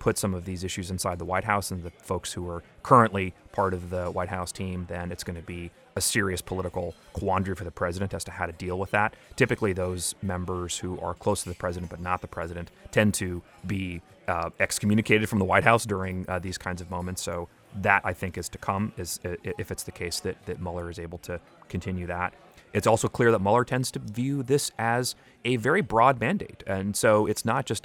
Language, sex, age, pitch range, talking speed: English, male, 30-49, 90-105 Hz, 230 wpm